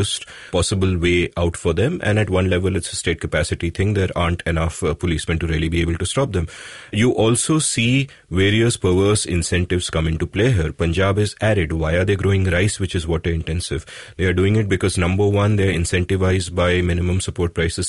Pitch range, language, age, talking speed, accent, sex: 85-105 Hz, English, 30-49, 205 wpm, Indian, male